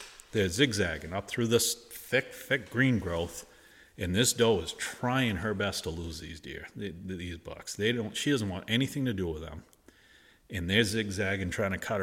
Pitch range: 85-115 Hz